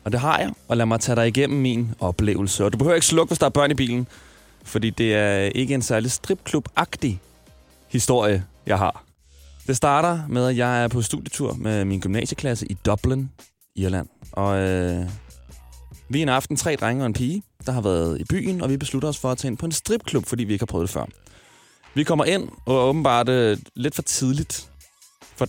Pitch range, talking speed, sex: 100-135 Hz, 215 wpm, male